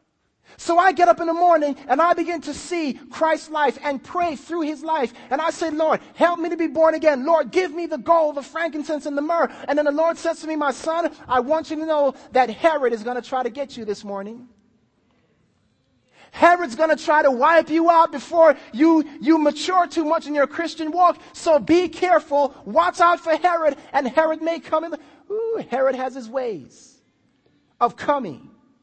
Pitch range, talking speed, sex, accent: 270-330 Hz, 210 wpm, male, American